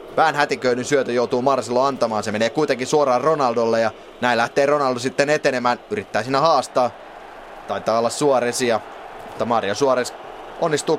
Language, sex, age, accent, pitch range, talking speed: Finnish, male, 20-39, native, 105-130 Hz, 140 wpm